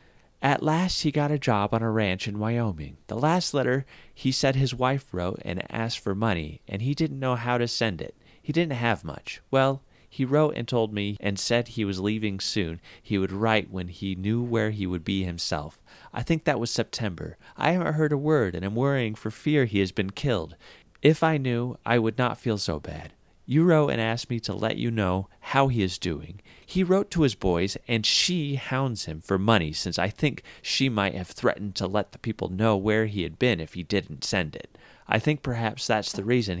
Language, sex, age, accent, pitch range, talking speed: English, male, 30-49, American, 95-125 Hz, 225 wpm